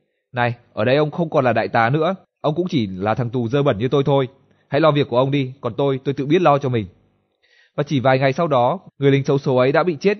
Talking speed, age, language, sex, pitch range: 290 wpm, 20-39, Vietnamese, male, 120-160 Hz